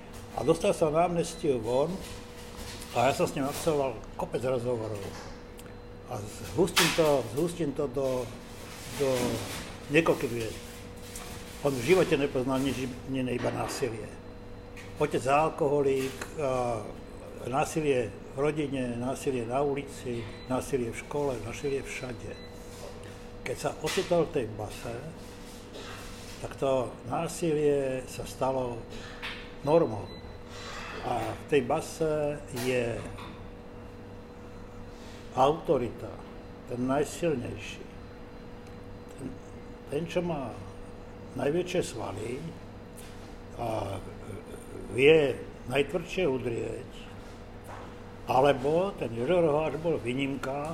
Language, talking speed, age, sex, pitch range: Slovak, 90 wpm, 60-79, male, 115-145 Hz